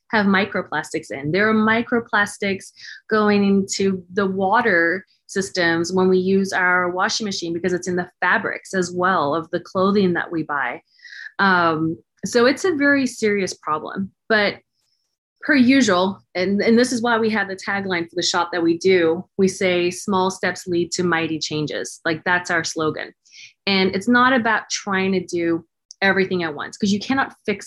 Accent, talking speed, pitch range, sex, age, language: American, 175 wpm, 175-210 Hz, female, 30-49, English